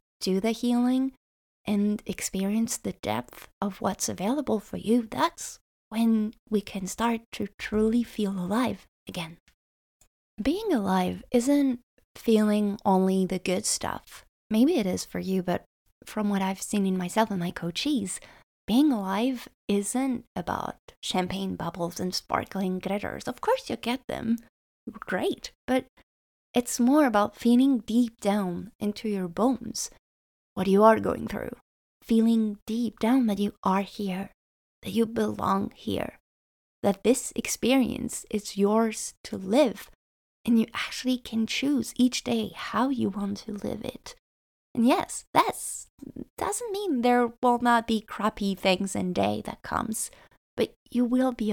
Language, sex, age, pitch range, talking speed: English, female, 20-39, 195-245 Hz, 145 wpm